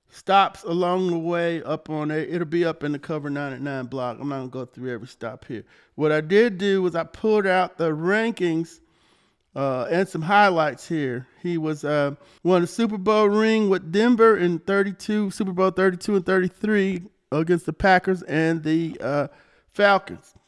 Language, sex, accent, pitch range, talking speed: English, male, American, 145-190 Hz, 185 wpm